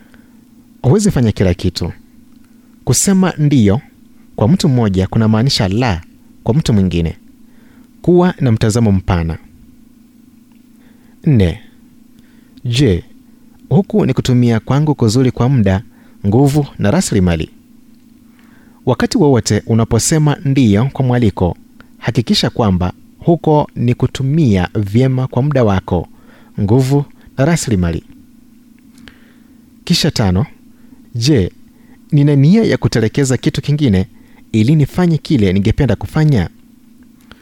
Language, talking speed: Swahili, 100 wpm